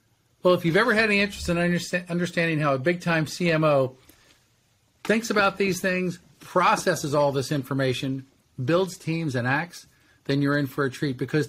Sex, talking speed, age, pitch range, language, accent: male, 170 wpm, 50-69, 135-175 Hz, English, American